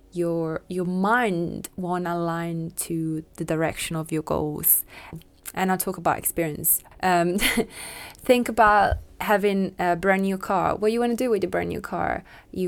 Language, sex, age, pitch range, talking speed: English, female, 20-39, 170-195 Hz, 170 wpm